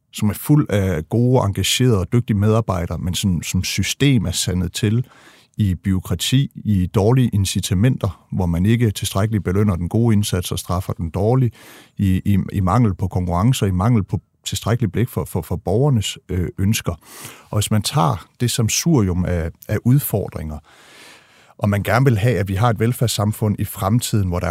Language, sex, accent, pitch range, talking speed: Danish, male, native, 95-115 Hz, 180 wpm